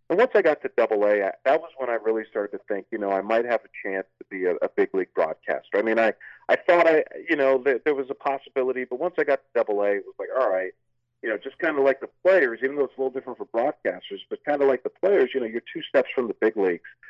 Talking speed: 300 wpm